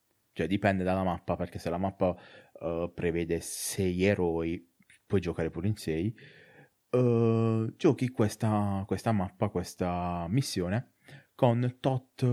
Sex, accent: male, native